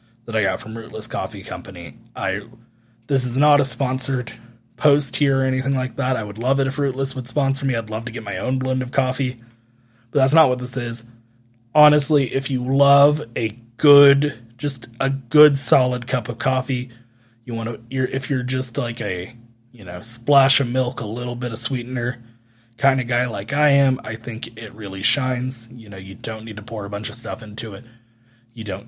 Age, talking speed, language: 20-39, 210 wpm, English